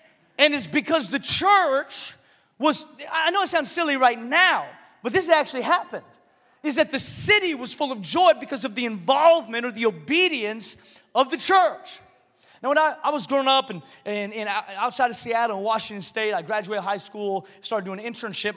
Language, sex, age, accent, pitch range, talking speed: English, male, 30-49, American, 175-260 Hz, 190 wpm